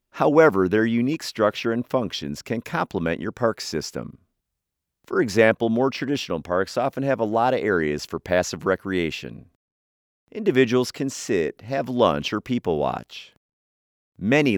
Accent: American